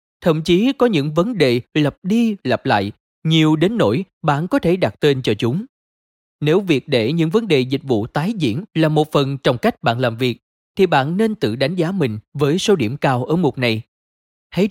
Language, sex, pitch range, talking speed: Vietnamese, male, 125-175 Hz, 215 wpm